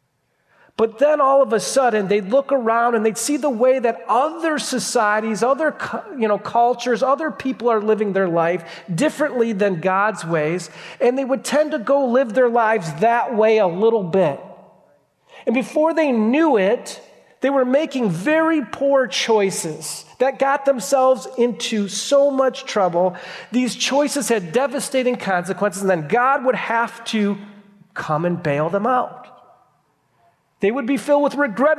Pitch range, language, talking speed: 175-260 Hz, English, 160 wpm